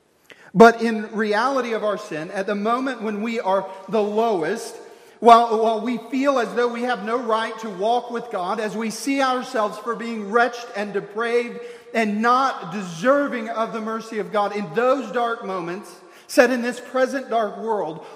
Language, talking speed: English, 180 wpm